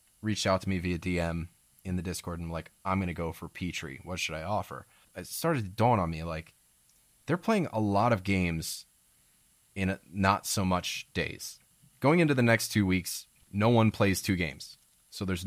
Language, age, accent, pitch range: English, 20-39, American, 85-110 Hz